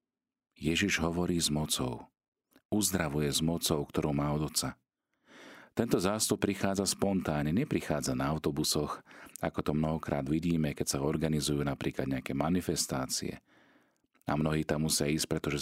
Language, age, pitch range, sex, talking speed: Slovak, 40-59, 75-95 Hz, male, 130 wpm